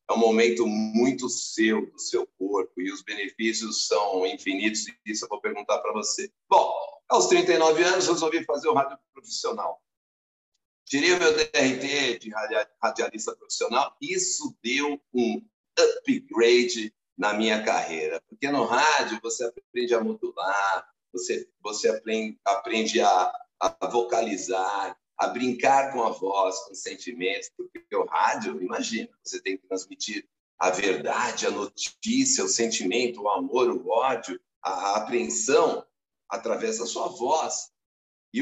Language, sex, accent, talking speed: Portuguese, male, Brazilian, 140 wpm